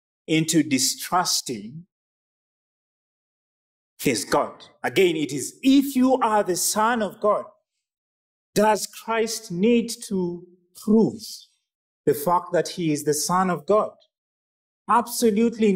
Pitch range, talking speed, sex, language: 150-215 Hz, 110 wpm, male, English